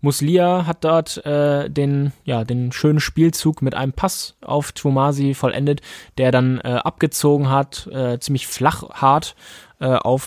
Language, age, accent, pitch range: German, 20-39, German, 115-145 Hz